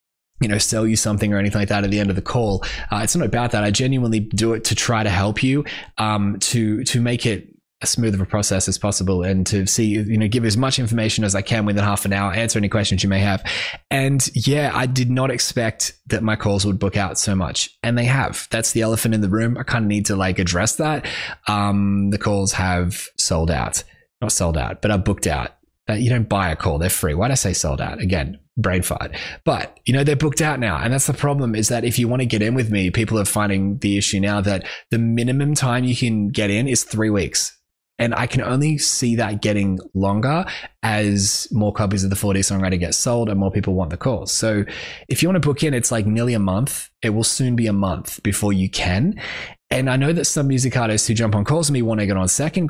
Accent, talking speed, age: Australian, 255 wpm, 20-39